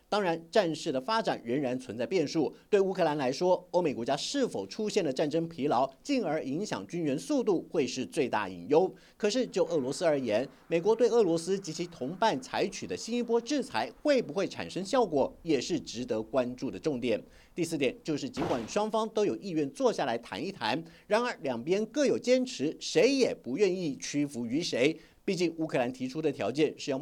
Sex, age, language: male, 50-69, Chinese